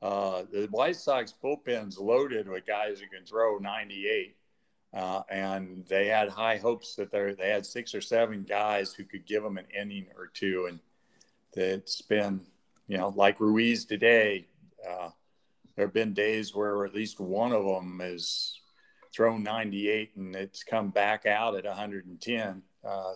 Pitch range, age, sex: 95-110 Hz, 50-69, male